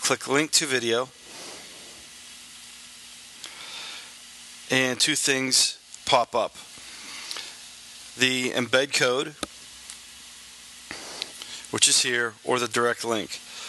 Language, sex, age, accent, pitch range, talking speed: English, male, 40-59, American, 115-130 Hz, 85 wpm